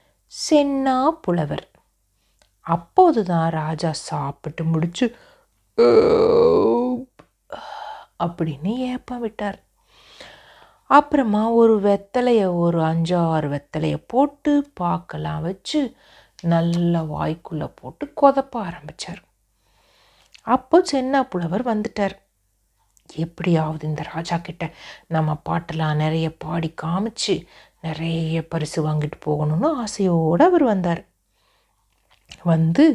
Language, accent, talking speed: Tamil, native, 70 wpm